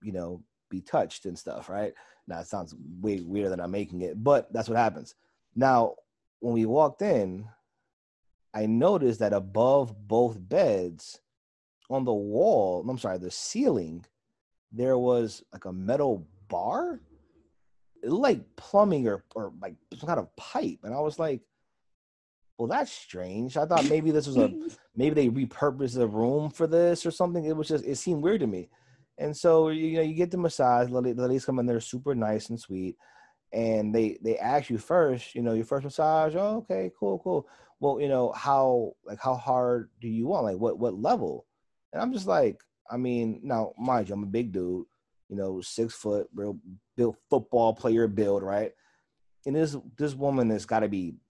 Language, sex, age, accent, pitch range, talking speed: English, male, 30-49, American, 105-140 Hz, 190 wpm